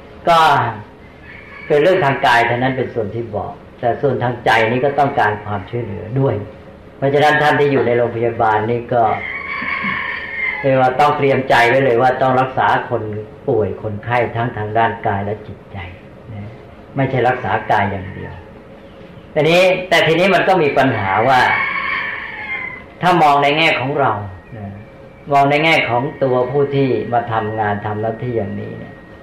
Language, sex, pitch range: English, female, 110-140 Hz